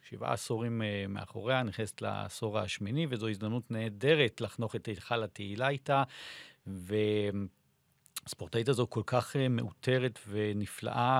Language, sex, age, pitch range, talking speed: Hebrew, male, 40-59, 105-135 Hz, 105 wpm